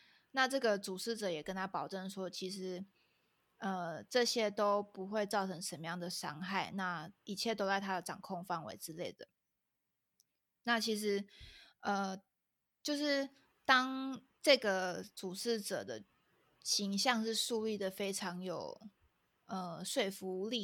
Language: Chinese